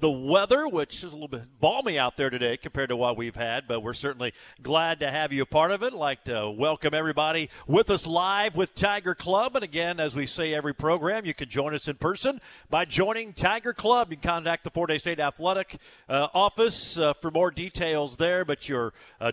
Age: 50-69